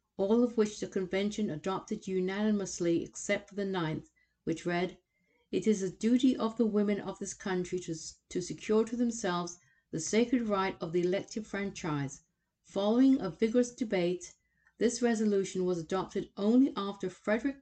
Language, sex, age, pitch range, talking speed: English, female, 50-69, 180-215 Hz, 155 wpm